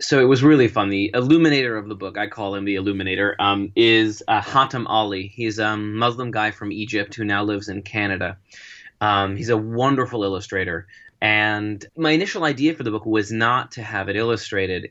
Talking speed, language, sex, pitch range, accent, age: 195 wpm, English, male, 105-135 Hz, American, 20-39